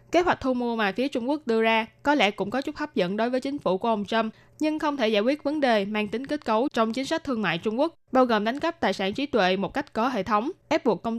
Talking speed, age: 310 wpm, 20-39